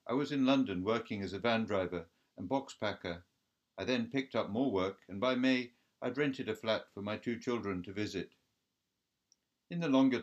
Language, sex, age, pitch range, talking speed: English, male, 60-79, 95-125 Hz, 200 wpm